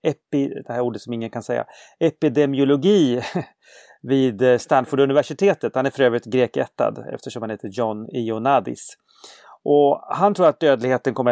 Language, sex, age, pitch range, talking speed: English, male, 30-49, 120-150 Hz, 140 wpm